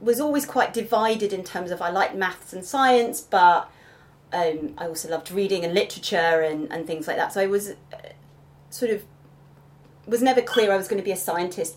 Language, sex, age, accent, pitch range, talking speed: English, female, 30-49, British, 170-220 Hz, 210 wpm